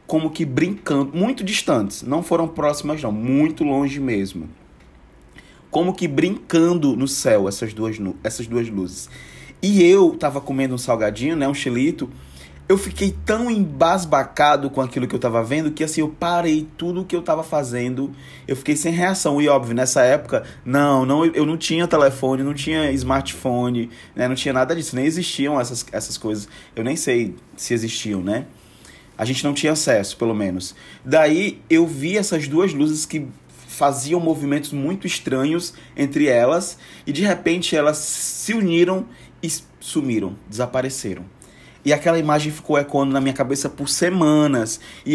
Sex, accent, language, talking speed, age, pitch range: male, Brazilian, Portuguese, 165 wpm, 20-39, 130-165 Hz